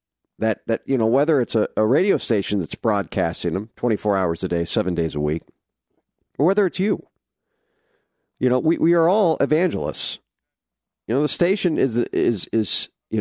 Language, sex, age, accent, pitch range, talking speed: English, male, 50-69, American, 90-125 Hz, 180 wpm